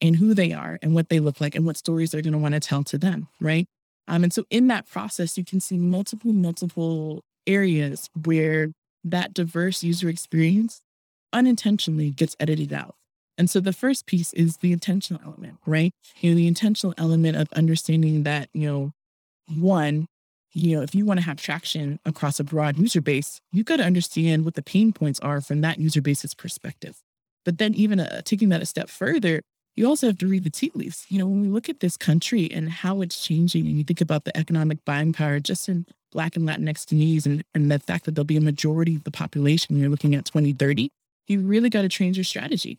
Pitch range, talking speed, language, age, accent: 155-185 Hz, 220 wpm, English, 20-39, American